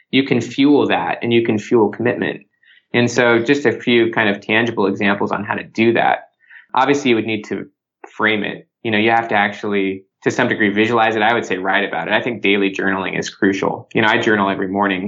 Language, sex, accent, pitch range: English, male, American, 100-120 Hz